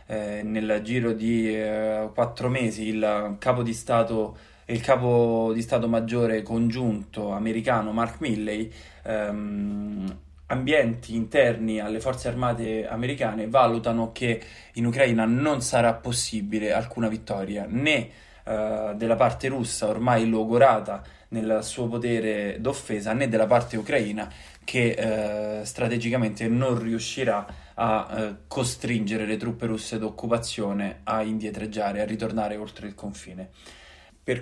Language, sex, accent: Italian, male, native